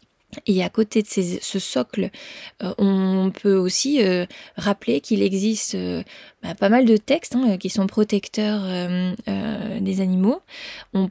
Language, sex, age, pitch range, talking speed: French, female, 20-39, 185-215 Hz, 155 wpm